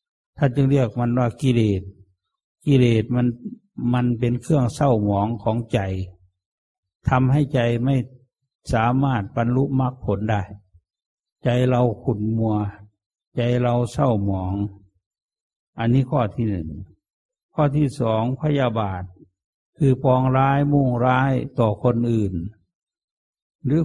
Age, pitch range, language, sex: 60-79, 100-135 Hz, English, male